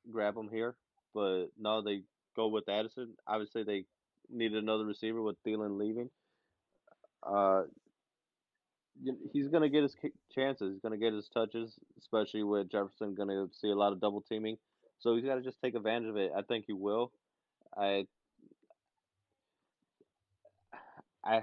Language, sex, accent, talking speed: English, male, American, 150 wpm